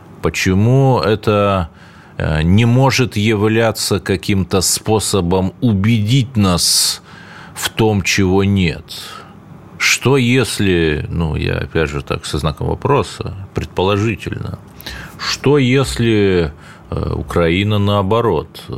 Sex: male